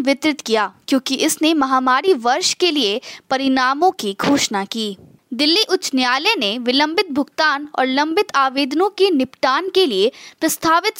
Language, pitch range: Hindi, 275-385 Hz